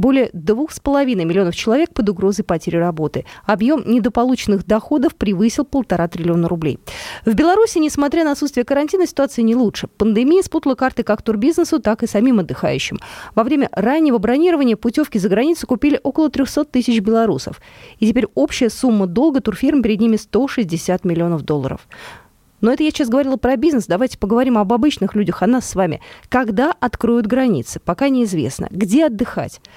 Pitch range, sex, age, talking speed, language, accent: 220-295 Hz, female, 20-39, 160 wpm, Russian, native